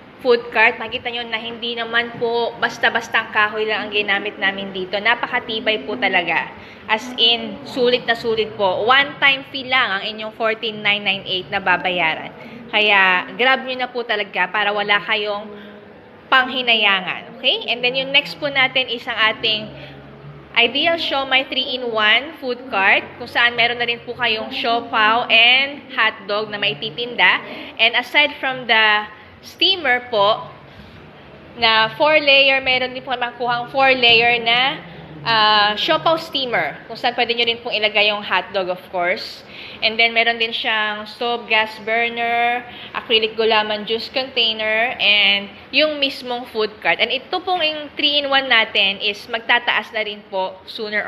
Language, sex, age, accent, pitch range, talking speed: English, female, 20-39, Filipino, 215-250 Hz, 150 wpm